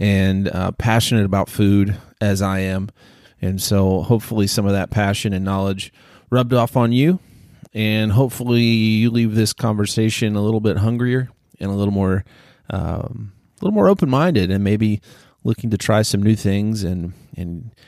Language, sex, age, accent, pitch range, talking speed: English, male, 30-49, American, 100-120 Hz, 170 wpm